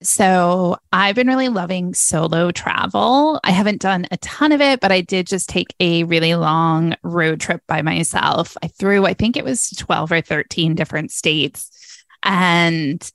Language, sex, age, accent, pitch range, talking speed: English, female, 20-39, American, 155-195 Hz, 175 wpm